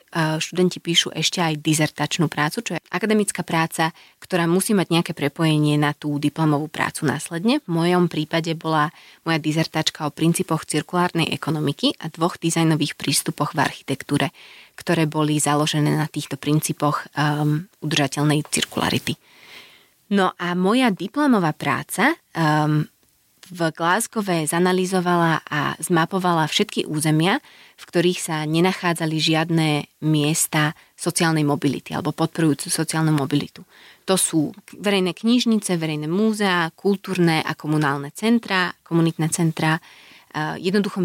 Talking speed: 120 wpm